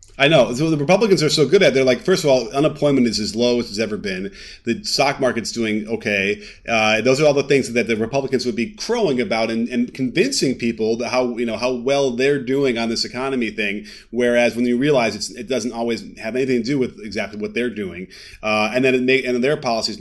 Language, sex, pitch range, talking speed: English, male, 115-140 Hz, 245 wpm